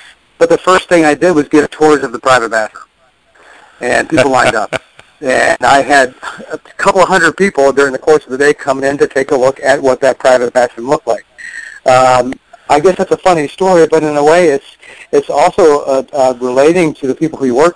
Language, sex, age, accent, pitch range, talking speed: English, male, 50-69, American, 130-155 Hz, 225 wpm